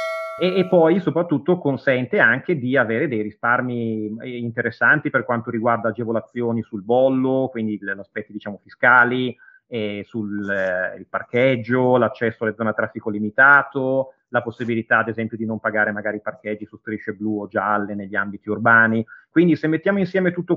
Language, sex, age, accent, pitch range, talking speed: Italian, male, 30-49, native, 110-145 Hz, 165 wpm